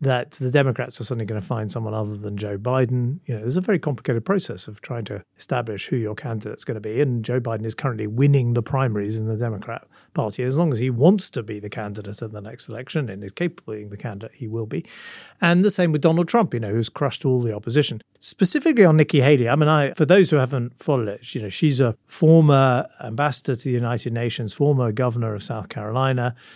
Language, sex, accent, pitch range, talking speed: English, male, British, 110-145 Hz, 235 wpm